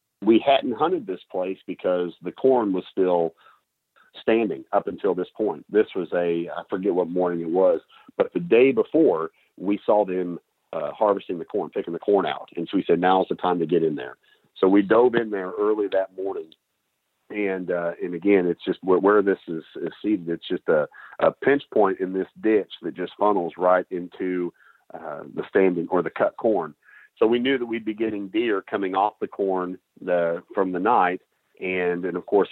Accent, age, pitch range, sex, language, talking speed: American, 40-59, 90-110 Hz, male, English, 205 wpm